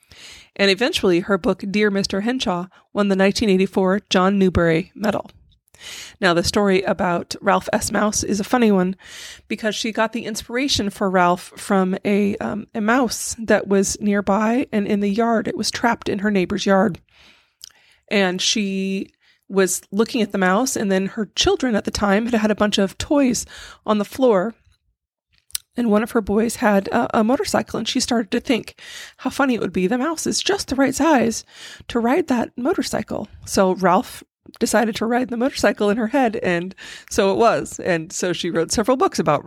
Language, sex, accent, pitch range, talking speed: English, female, American, 195-235 Hz, 185 wpm